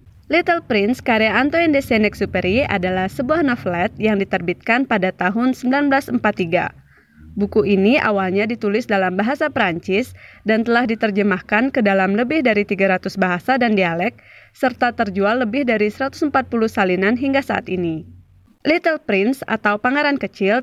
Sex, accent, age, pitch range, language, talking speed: female, native, 20-39, 190-245 Hz, Indonesian, 135 wpm